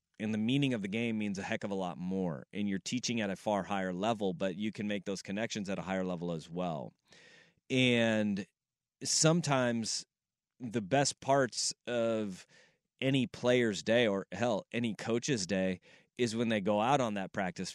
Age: 30-49